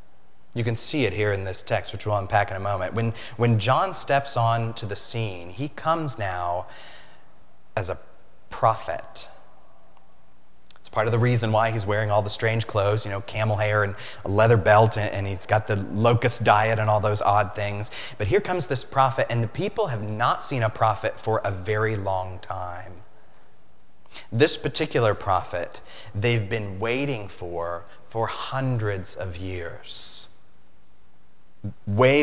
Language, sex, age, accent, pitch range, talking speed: English, male, 30-49, American, 100-125 Hz, 165 wpm